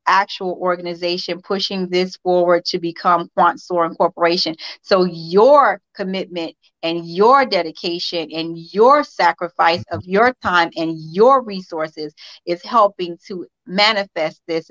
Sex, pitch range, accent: female, 170-205 Hz, American